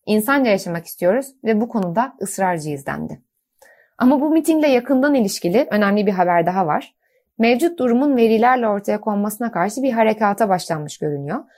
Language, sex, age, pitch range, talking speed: Turkish, female, 30-49, 190-260 Hz, 145 wpm